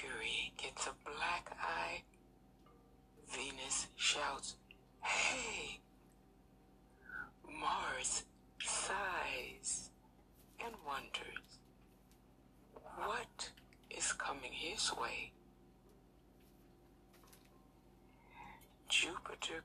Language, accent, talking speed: English, American, 55 wpm